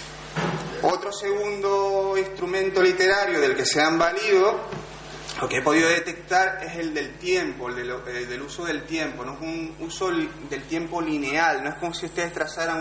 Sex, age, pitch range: male, 30-49, 160-205 Hz